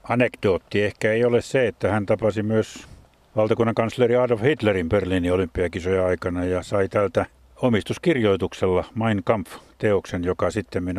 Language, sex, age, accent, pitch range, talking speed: Finnish, male, 50-69, native, 95-115 Hz, 130 wpm